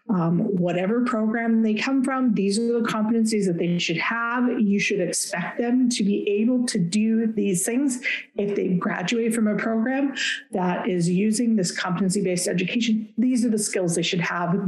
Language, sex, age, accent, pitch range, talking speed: English, female, 40-59, American, 185-225 Hz, 180 wpm